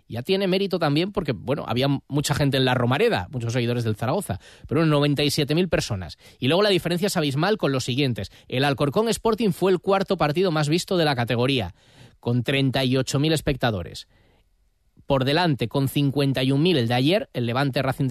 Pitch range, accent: 130-175 Hz, Spanish